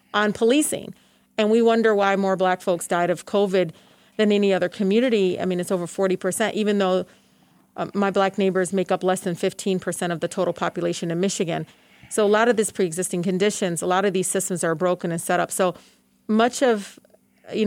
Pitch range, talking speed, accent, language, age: 180-205 Hz, 200 wpm, American, English, 40-59